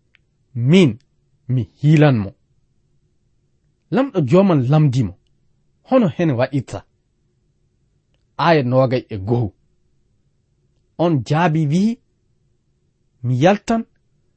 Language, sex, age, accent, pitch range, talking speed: English, male, 40-59, South African, 125-175 Hz, 85 wpm